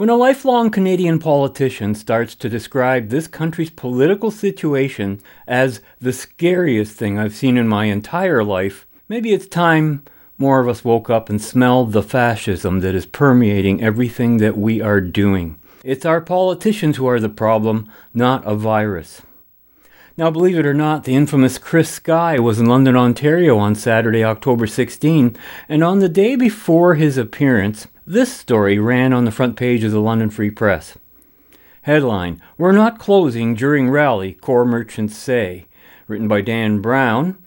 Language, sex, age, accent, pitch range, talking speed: English, male, 40-59, American, 110-155 Hz, 160 wpm